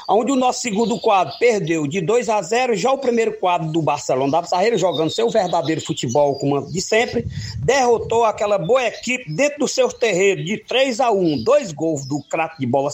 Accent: Brazilian